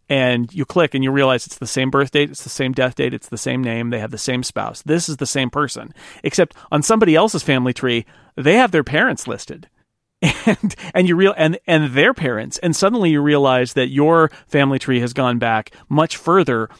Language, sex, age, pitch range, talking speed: English, male, 40-59, 125-155 Hz, 220 wpm